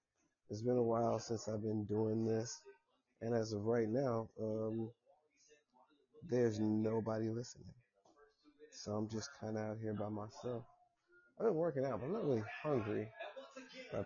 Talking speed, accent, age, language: 160 wpm, American, 20-39, English